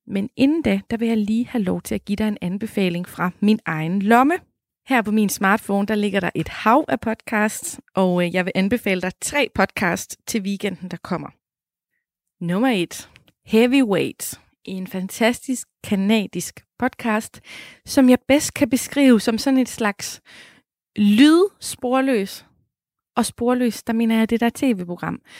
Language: Danish